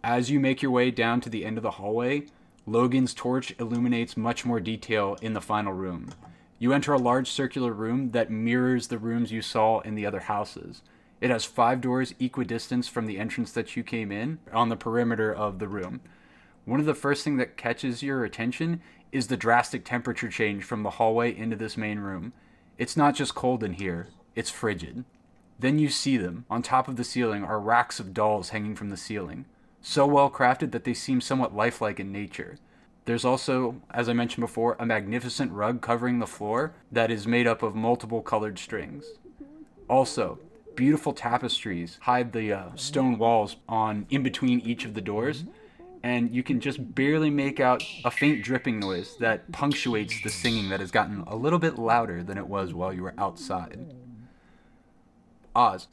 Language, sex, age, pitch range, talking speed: English, male, 30-49, 110-130 Hz, 190 wpm